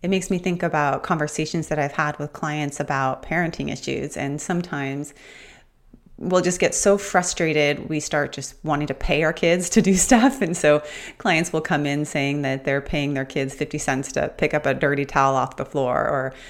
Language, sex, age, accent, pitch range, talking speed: English, female, 30-49, American, 145-185 Hz, 205 wpm